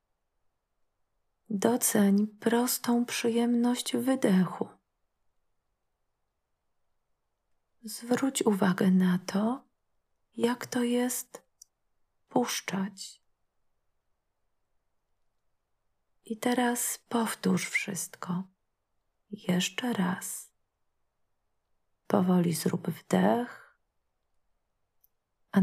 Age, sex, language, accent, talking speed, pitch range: 40-59, female, Polish, native, 50 wpm, 175-225 Hz